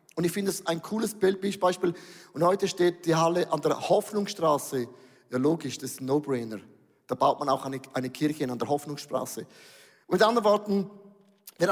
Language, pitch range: German, 165-230 Hz